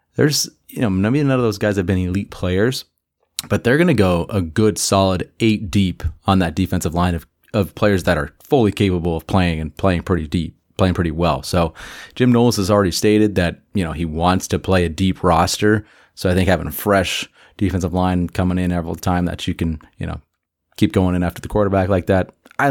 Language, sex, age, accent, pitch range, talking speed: English, male, 30-49, American, 85-105 Hz, 220 wpm